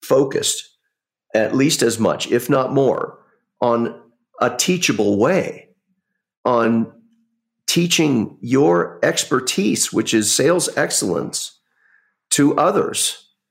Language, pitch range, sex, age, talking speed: English, 100-160 Hz, male, 50-69, 100 wpm